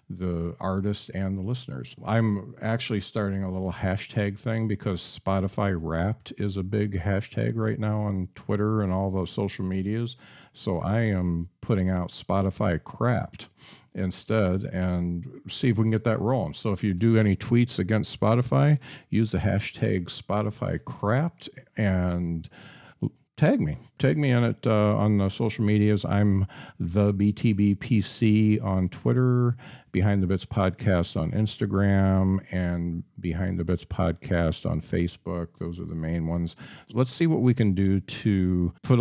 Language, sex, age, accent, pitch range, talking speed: English, male, 50-69, American, 90-110 Hz, 155 wpm